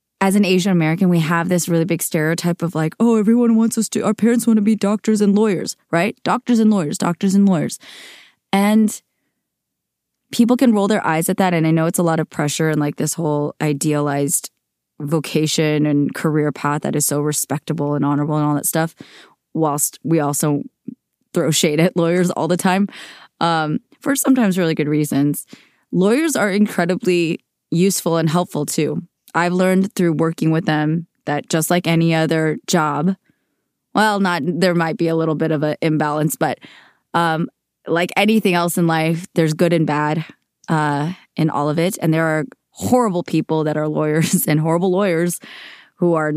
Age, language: 20-39, English